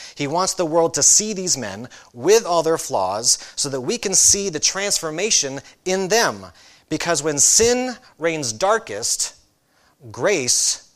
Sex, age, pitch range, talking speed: male, 30-49, 120-165 Hz, 150 wpm